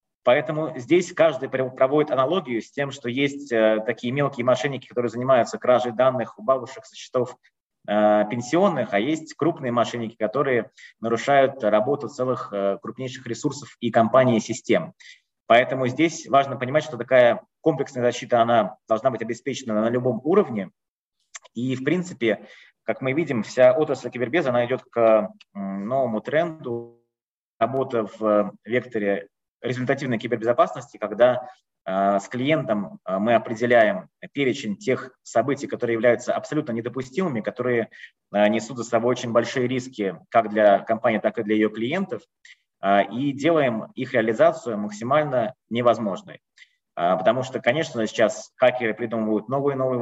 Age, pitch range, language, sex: 20-39, 115-135 Hz, Russian, male